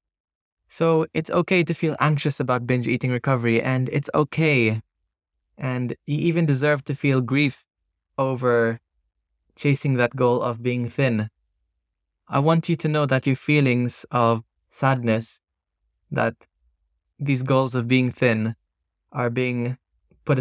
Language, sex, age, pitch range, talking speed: Italian, male, 20-39, 110-140 Hz, 135 wpm